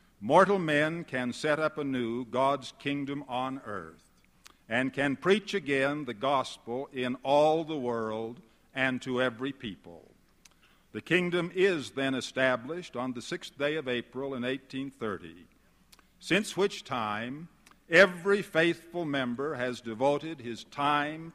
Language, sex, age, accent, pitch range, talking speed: English, male, 60-79, American, 125-155 Hz, 130 wpm